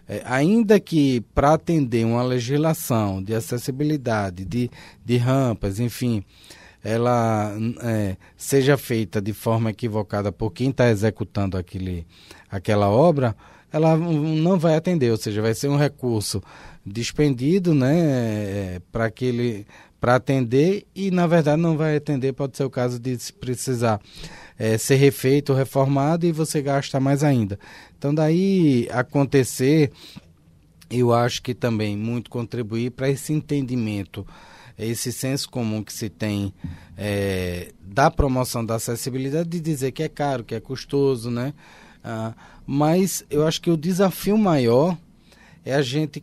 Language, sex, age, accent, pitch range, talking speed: Portuguese, male, 20-39, Brazilian, 110-150 Hz, 135 wpm